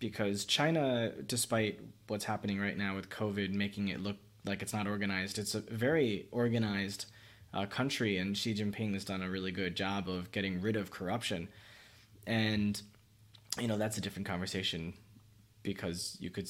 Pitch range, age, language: 95-110 Hz, 20-39, English